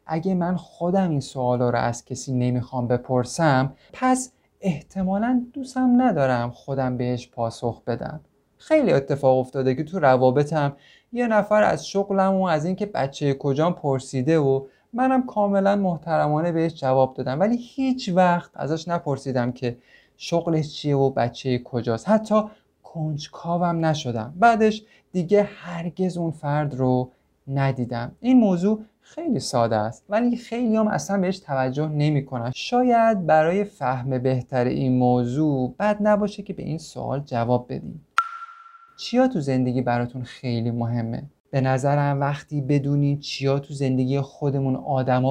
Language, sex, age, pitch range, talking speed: Persian, male, 30-49, 130-190 Hz, 135 wpm